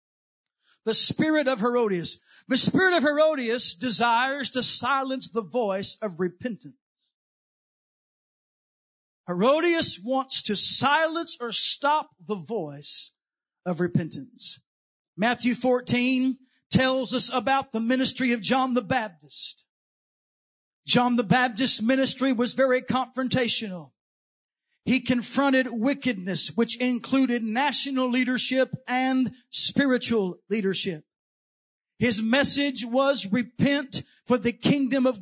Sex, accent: male, American